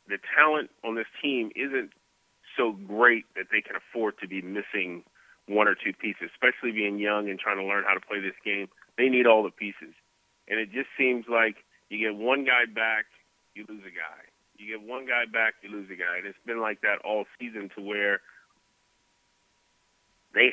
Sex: male